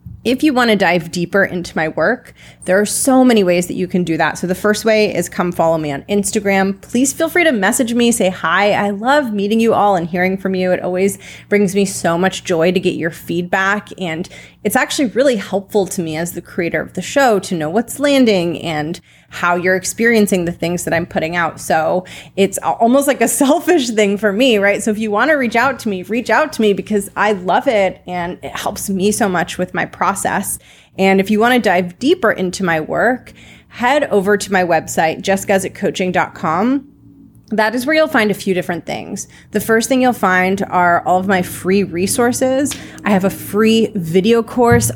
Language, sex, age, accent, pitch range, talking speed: English, female, 30-49, American, 175-220 Hz, 215 wpm